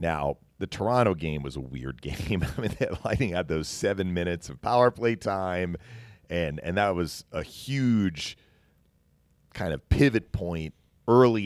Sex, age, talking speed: male, 40-59, 160 wpm